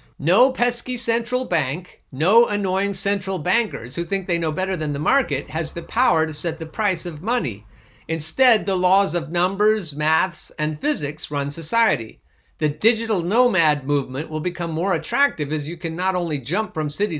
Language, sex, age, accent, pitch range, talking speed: English, male, 50-69, American, 145-205 Hz, 180 wpm